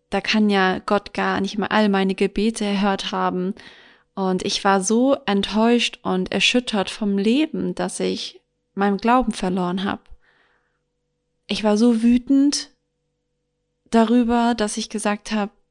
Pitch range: 190-225 Hz